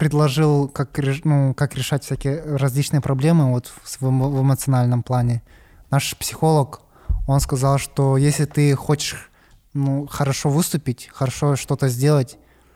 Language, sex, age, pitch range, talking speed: Russian, male, 20-39, 125-145 Hz, 120 wpm